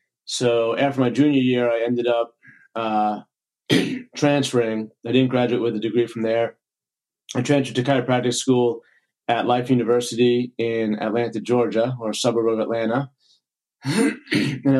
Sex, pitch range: male, 115-130 Hz